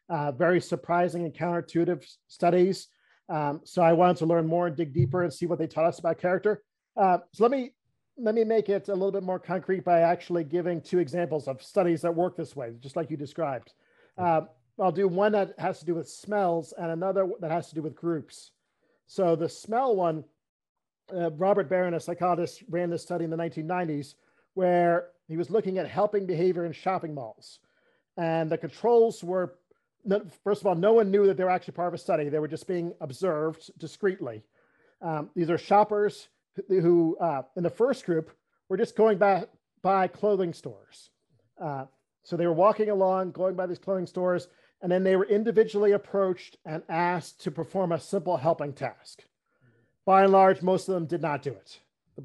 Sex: male